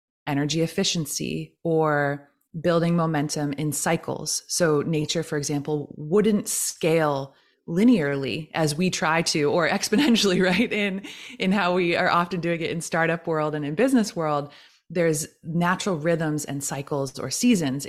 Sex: female